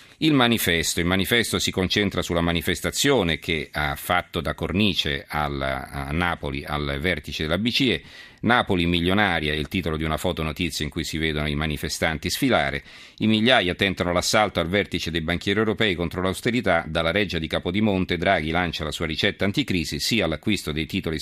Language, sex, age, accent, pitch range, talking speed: Italian, male, 50-69, native, 80-100 Hz, 175 wpm